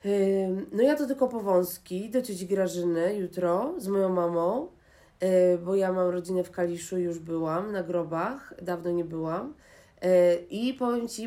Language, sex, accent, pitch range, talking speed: Polish, female, native, 180-220 Hz, 150 wpm